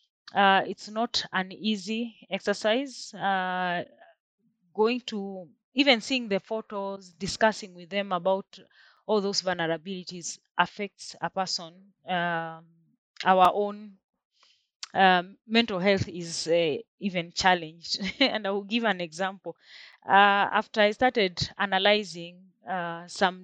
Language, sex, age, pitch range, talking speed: English, female, 30-49, 185-220 Hz, 115 wpm